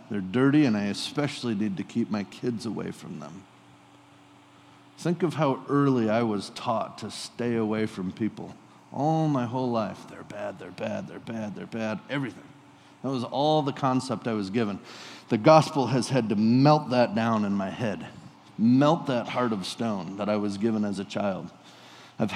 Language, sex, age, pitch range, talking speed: English, male, 40-59, 115-180 Hz, 190 wpm